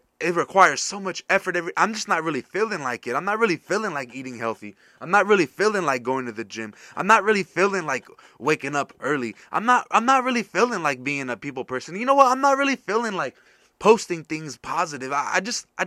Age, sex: 20-39, male